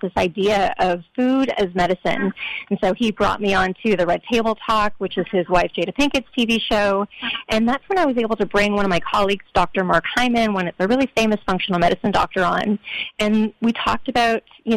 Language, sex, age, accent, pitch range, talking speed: English, female, 30-49, American, 190-245 Hz, 220 wpm